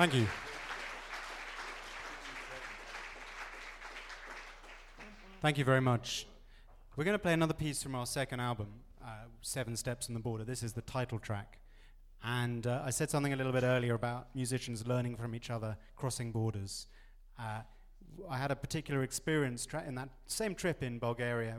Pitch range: 110-130 Hz